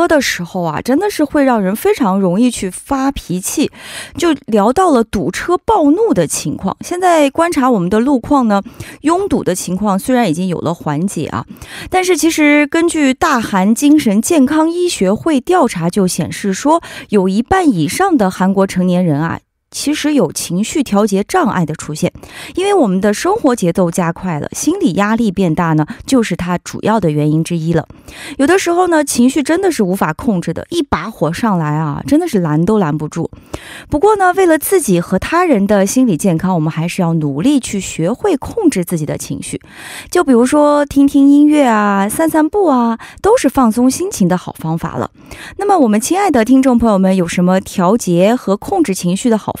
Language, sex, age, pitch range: Korean, female, 30-49, 180-300 Hz